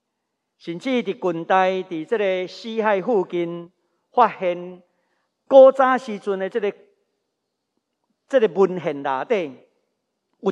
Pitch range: 180-245 Hz